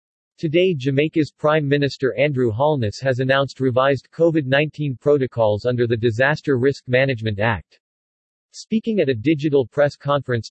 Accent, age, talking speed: American, 50-69, 130 wpm